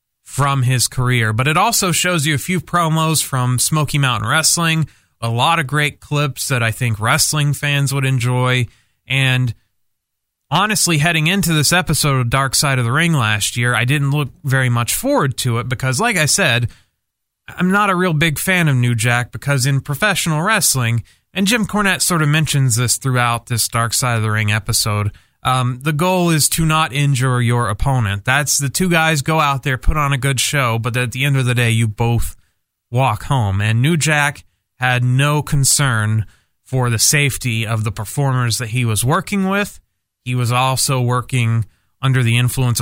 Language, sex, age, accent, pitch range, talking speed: English, male, 30-49, American, 120-155 Hz, 190 wpm